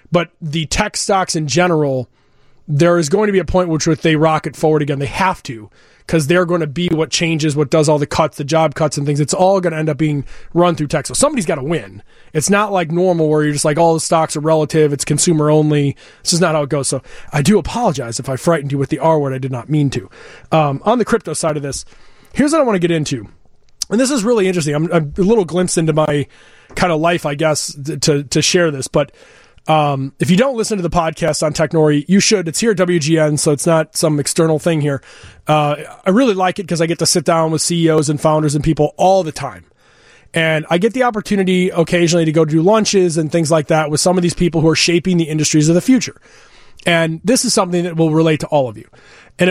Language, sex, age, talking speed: English, male, 20-39, 255 wpm